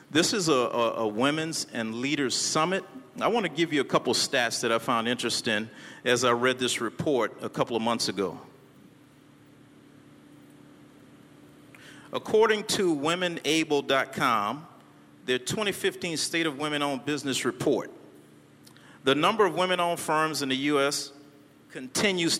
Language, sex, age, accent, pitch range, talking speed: English, male, 50-69, American, 120-155 Hz, 135 wpm